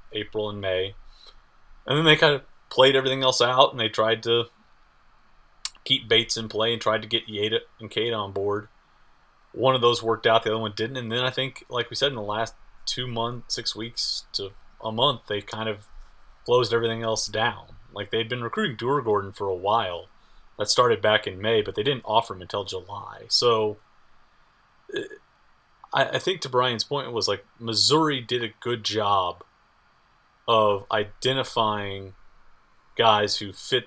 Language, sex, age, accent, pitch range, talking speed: English, male, 30-49, American, 100-125 Hz, 180 wpm